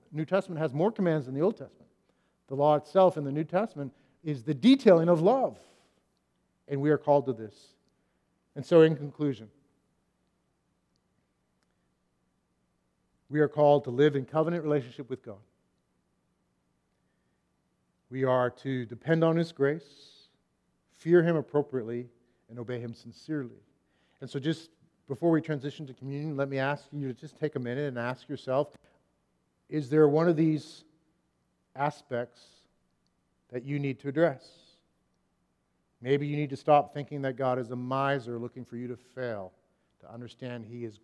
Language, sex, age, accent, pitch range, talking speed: English, male, 50-69, American, 120-155 Hz, 155 wpm